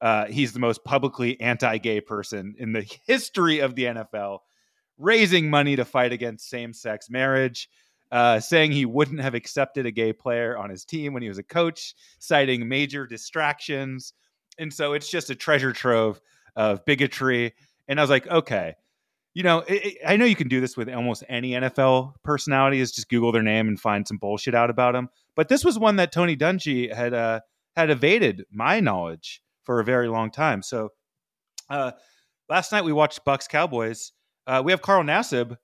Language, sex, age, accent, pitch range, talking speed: English, male, 30-49, American, 120-155 Hz, 185 wpm